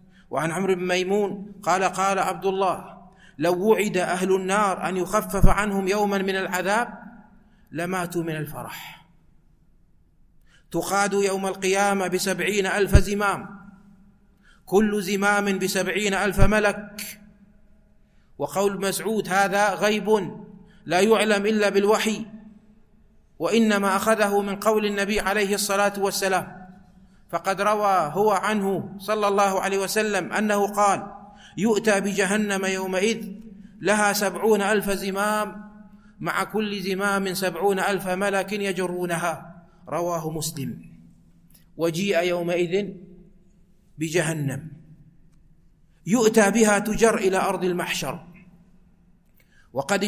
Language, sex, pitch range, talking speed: Arabic, male, 185-205 Hz, 100 wpm